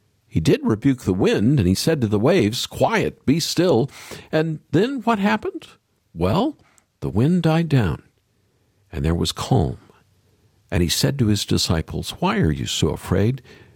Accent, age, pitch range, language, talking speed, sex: American, 50-69, 95-135 Hz, English, 165 wpm, male